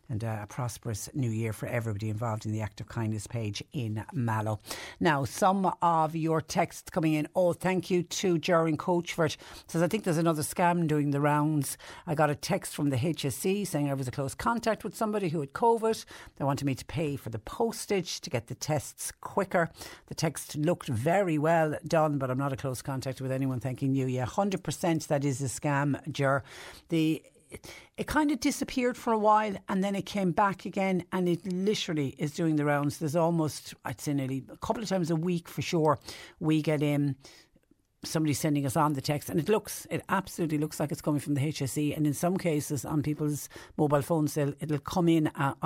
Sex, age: female, 60-79